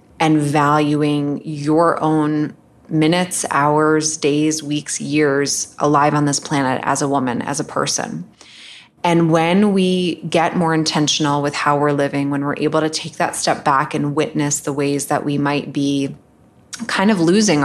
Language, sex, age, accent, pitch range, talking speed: English, female, 20-39, American, 145-160 Hz, 165 wpm